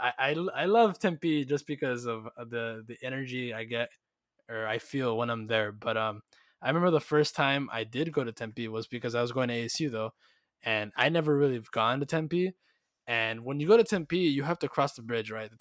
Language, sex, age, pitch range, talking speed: English, male, 20-39, 115-145 Hz, 235 wpm